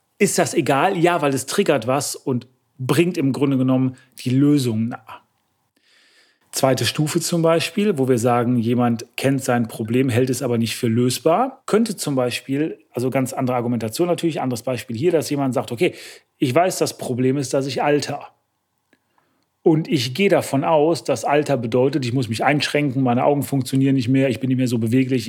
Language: German